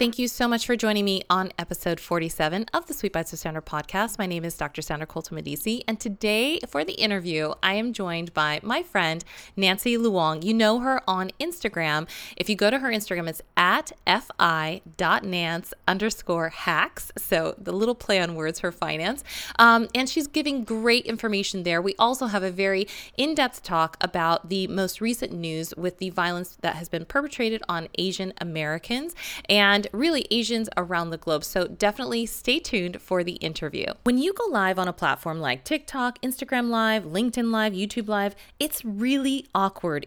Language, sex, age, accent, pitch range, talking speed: English, female, 20-39, American, 170-235 Hz, 180 wpm